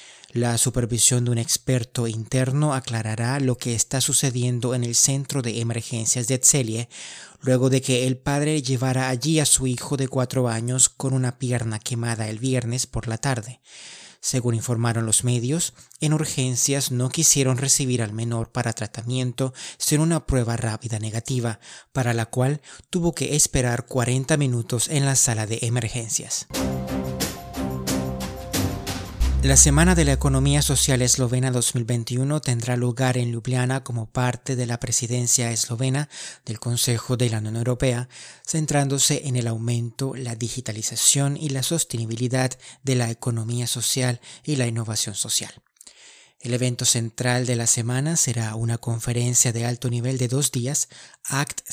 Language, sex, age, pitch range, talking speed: Spanish, male, 30-49, 115-130 Hz, 150 wpm